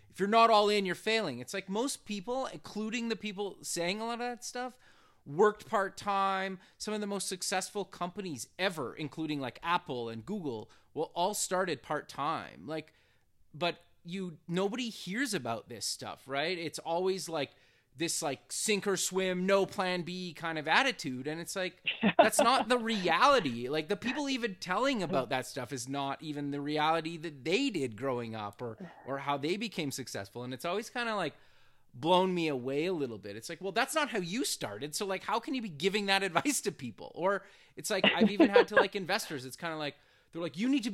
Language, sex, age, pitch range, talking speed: English, male, 30-49, 145-210 Hz, 205 wpm